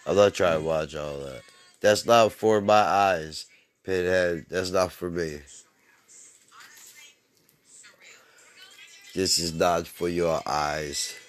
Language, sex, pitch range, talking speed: English, male, 95-125 Hz, 120 wpm